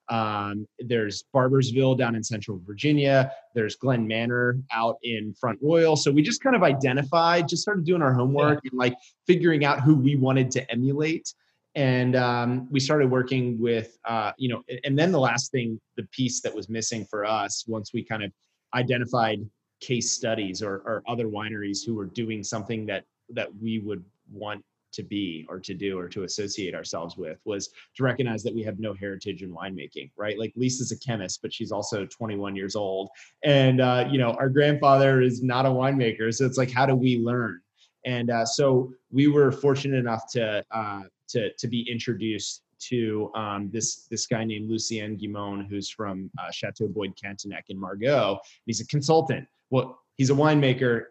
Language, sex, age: English, male, 30-49